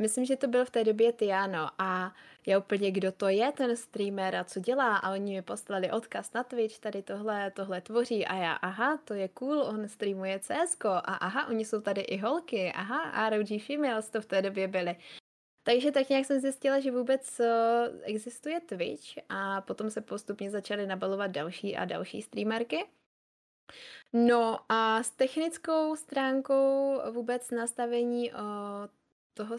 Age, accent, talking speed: 20-39, native, 170 wpm